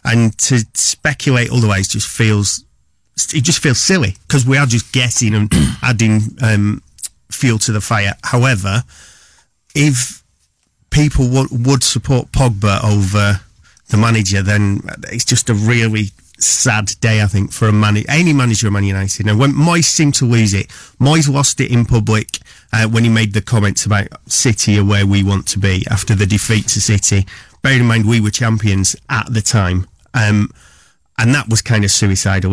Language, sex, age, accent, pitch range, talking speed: English, male, 30-49, British, 105-130 Hz, 175 wpm